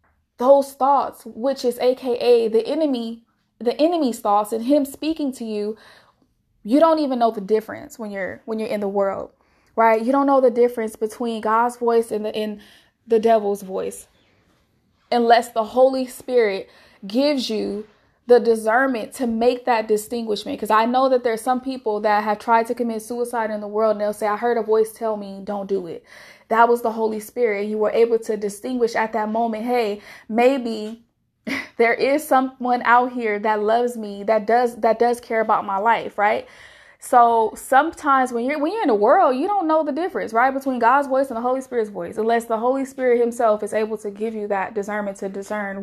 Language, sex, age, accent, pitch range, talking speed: English, female, 20-39, American, 215-255 Hz, 200 wpm